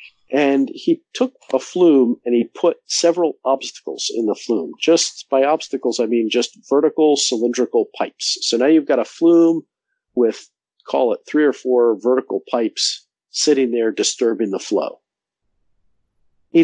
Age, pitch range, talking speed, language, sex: 50-69, 115-175 Hz, 150 wpm, English, male